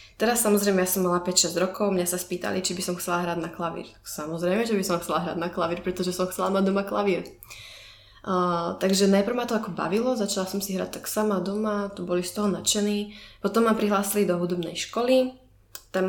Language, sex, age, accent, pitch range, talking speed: Czech, female, 20-39, native, 175-195 Hz, 210 wpm